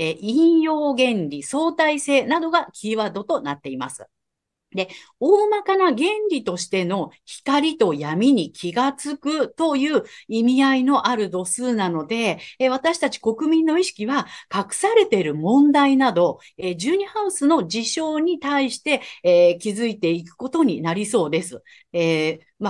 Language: Japanese